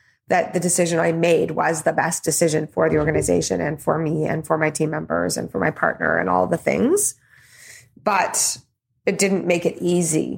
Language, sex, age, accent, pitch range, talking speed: English, female, 30-49, American, 160-190 Hz, 195 wpm